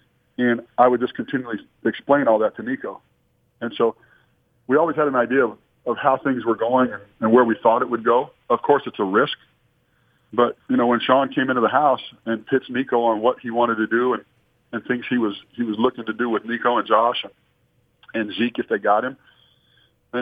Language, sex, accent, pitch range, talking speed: English, male, American, 115-130 Hz, 220 wpm